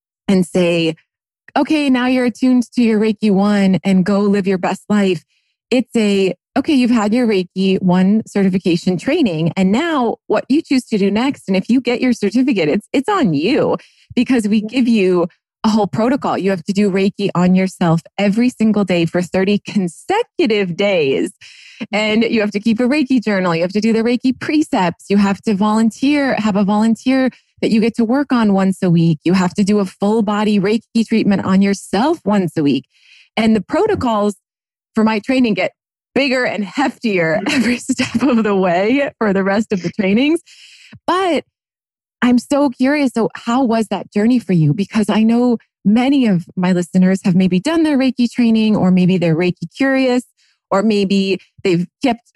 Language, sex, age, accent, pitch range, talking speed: English, female, 20-39, American, 190-245 Hz, 190 wpm